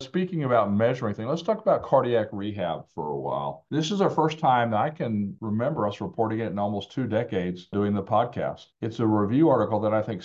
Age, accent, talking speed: 50-69, American, 225 wpm